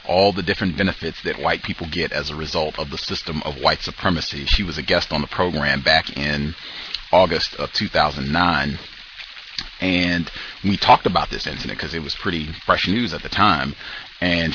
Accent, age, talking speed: American, 30-49, 185 wpm